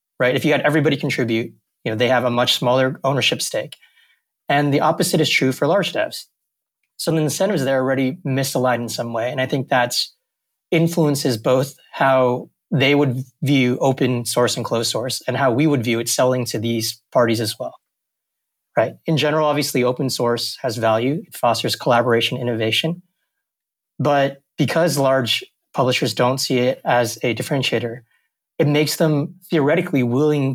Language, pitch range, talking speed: English, 125-155 Hz, 170 wpm